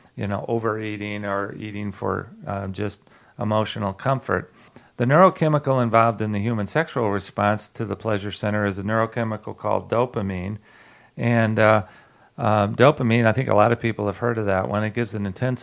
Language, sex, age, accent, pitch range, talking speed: English, male, 40-59, American, 105-125 Hz, 175 wpm